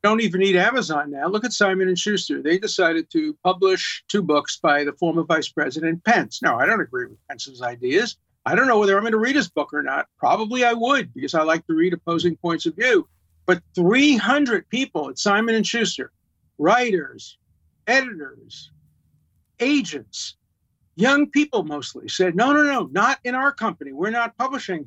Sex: male